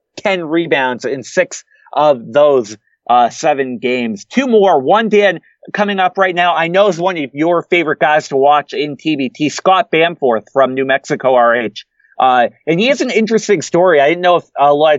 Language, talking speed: English, 190 wpm